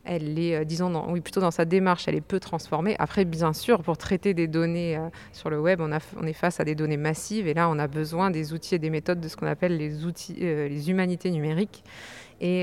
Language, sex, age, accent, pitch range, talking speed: French, female, 20-39, French, 160-190 Hz, 260 wpm